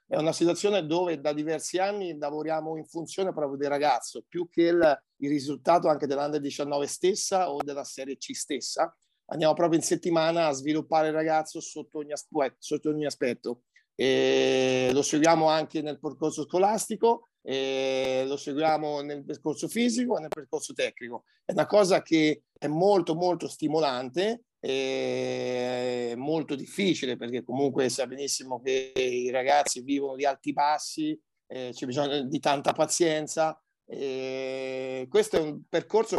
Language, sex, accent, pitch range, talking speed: Italian, male, native, 140-160 Hz, 150 wpm